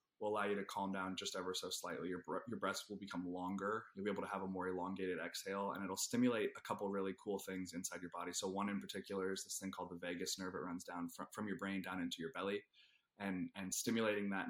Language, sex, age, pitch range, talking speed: English, male, 20-39, 95-105 Hz, 255 wpm